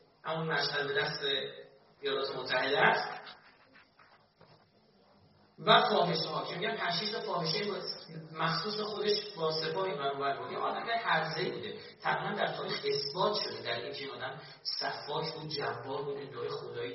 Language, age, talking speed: Persian, 40-59, 125 wpm